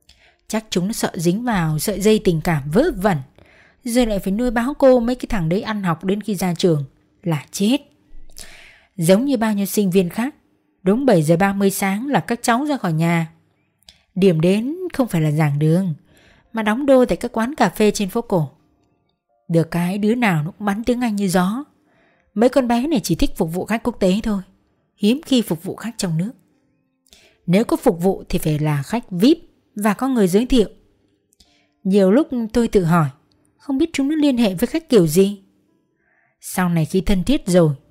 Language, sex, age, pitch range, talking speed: Vietnamese, female, 20-39, 170-235 Hz, 205 wpm